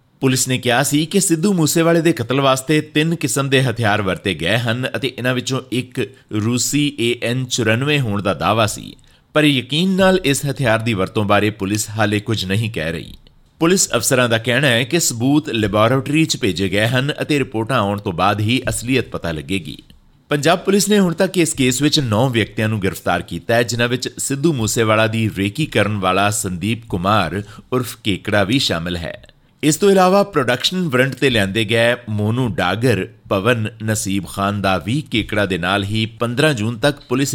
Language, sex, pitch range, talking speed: Punjabi, male, 105-145 Hz, 165 wpm